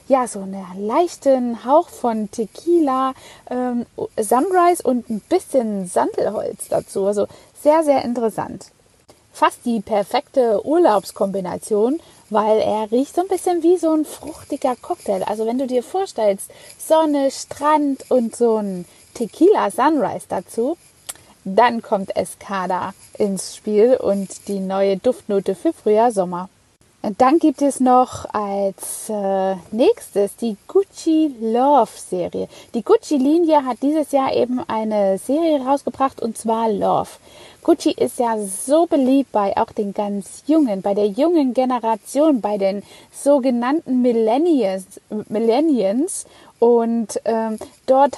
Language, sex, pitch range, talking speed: German, female, 210-290 Hz, 130 wpm